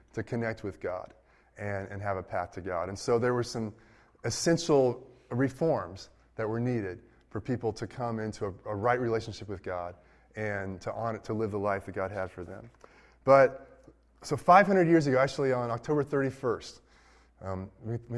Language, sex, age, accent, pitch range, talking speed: English, male, 20-39, American, 105-135 Hz, 180 wpm